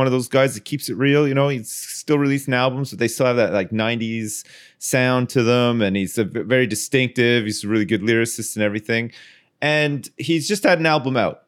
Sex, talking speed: male, 225 wpm